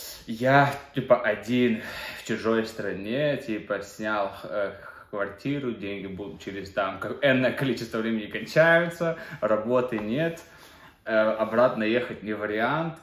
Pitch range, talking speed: 95-115 Hz, 115 wpm